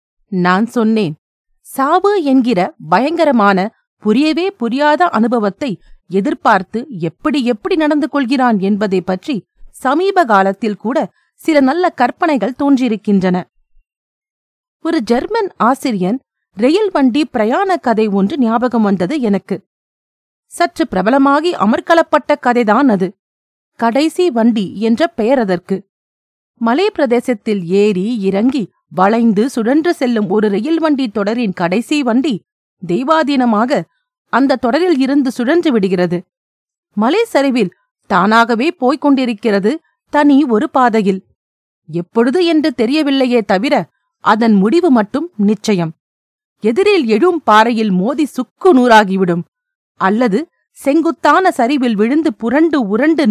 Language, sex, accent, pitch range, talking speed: Tamil, female, native, 210-305 Hz, 100 wpm